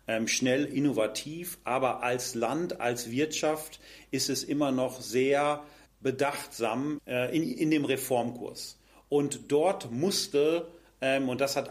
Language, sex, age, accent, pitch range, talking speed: German, male, 40-59, German, 130-160 Hz, 120 wpm